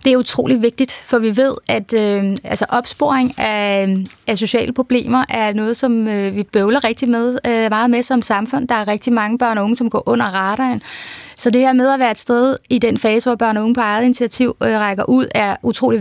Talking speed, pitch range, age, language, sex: 230 wpm, 210-250 Hz, 20-39, Danish, female